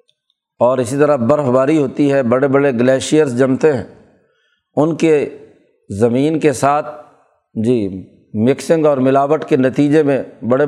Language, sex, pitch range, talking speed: Urdu, male, 130-155 Hz, 140 wpm